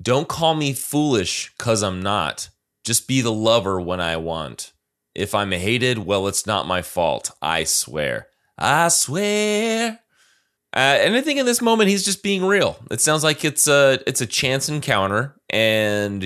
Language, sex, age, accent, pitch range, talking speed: English, male, 30-49, American, 90-125 Hz, 170 wpm